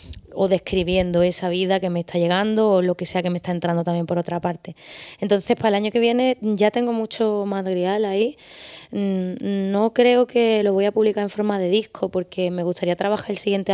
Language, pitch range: Spanish, 175-200 Hz